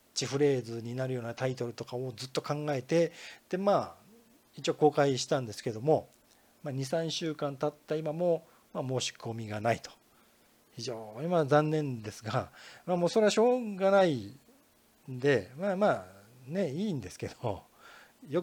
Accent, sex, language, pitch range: native, male, Japanese, 125-185 Hz